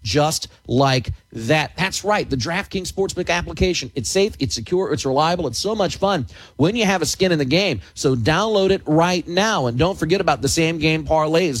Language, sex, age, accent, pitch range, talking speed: English, male, 40-59, American, 125-175 Hz, 205 wpm